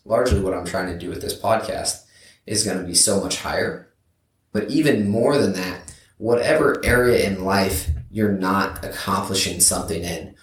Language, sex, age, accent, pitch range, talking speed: English, male, 20-39, American, 95-110 Hz, 175 wpm